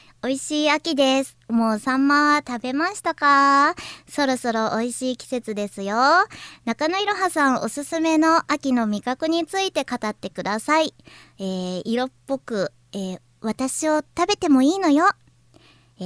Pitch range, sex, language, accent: 200-290 Hz, male, Japanese, native